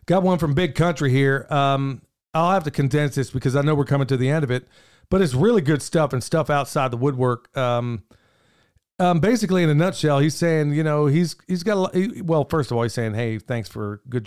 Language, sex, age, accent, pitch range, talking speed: English, male, 40-59, American, 125-165 Hz, 235 wpm